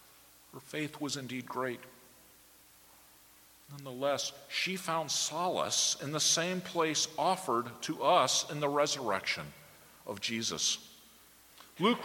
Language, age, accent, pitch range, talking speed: English, 50-69, American, 120-175 Hz, 110 wpm